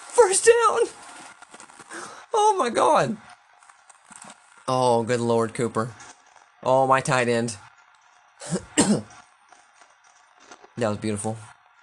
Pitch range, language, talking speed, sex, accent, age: 115-155 Hz, English, 75 wpm, male, American, 20-39